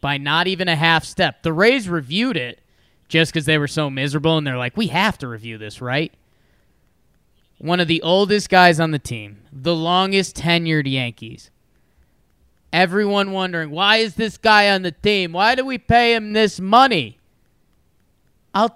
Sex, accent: male, American